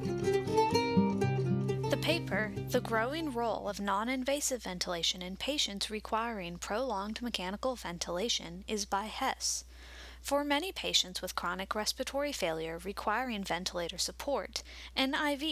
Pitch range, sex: 180-265 Hz, female